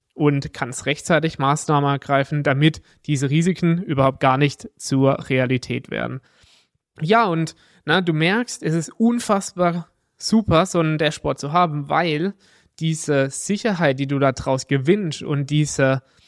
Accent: German